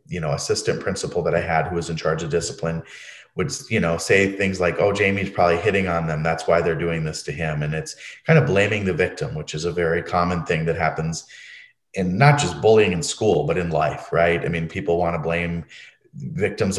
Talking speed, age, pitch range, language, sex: 230 wpm, 30-49, 85-95 Hz, English, male